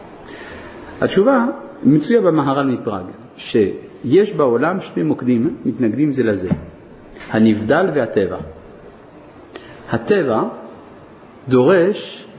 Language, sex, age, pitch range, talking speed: Hebrew, male, 50-69, 115-185 Hz, 75 wpm